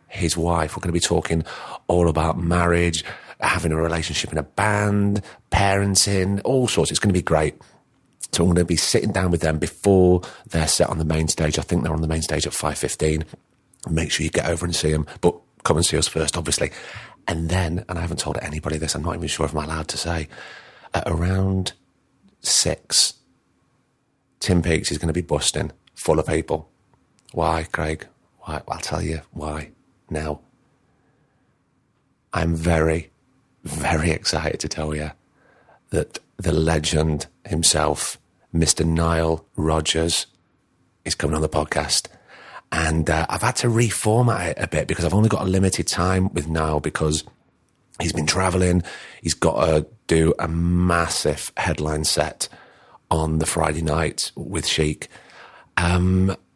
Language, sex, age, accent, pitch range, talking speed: English, male, 40-59, British, 80-90 Hz, 170 wpm